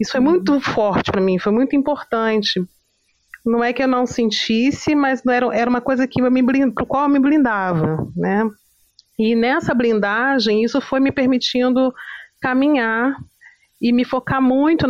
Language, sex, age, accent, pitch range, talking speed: Portuguese, female, 30-49, Brazilian, 195-250 Hz, 155 wpm